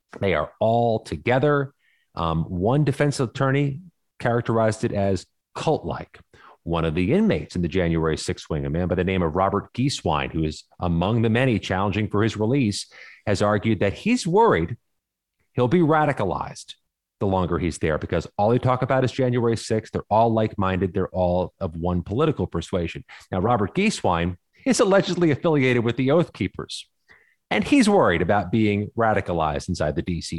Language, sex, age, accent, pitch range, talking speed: English, male, 30-49, American, 90-120 Hz, 170 wpm